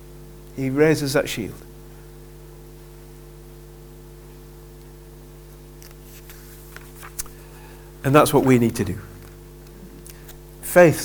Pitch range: 125-165 Hz